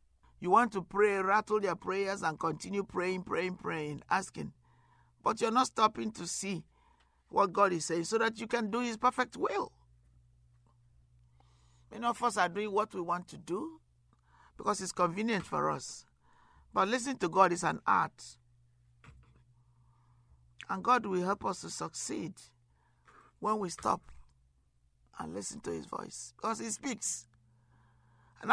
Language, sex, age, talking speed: English, male, 50-69, 150 wpm